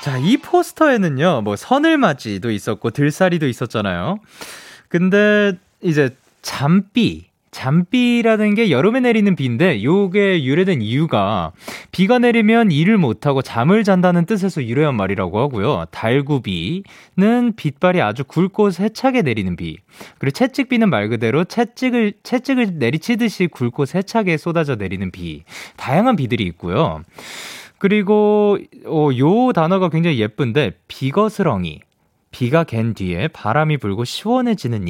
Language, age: Korean, 20-39